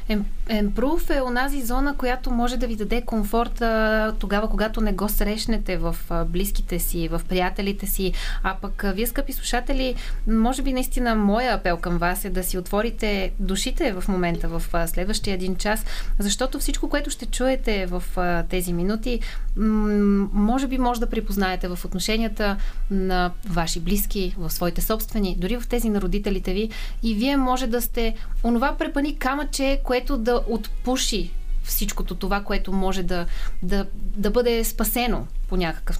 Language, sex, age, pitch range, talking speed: Bulgarian, female, 20-39, 185-240 Hz, 155 wpm